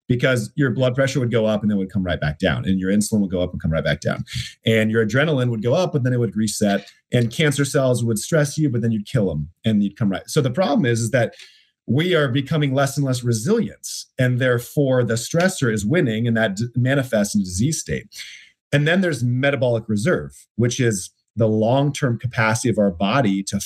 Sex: male